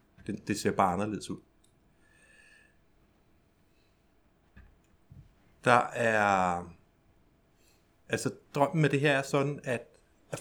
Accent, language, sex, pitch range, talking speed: native, Danish, male, 100-130 Hz, 100 wpm